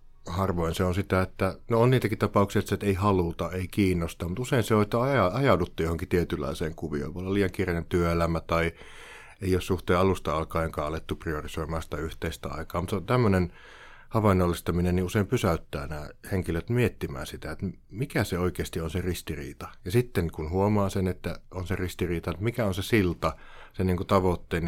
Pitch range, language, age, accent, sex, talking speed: 85-100 Hz, Finnish, 60-79, native, male, 180 wpm